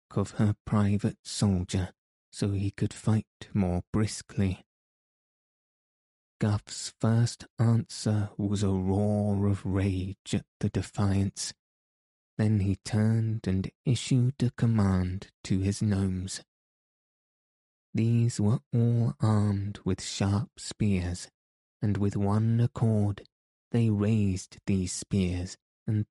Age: 20-39